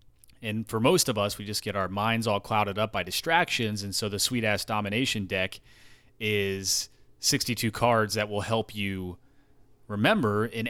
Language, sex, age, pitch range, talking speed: English, male, 30-49, 105-130 Hz, 170 wpm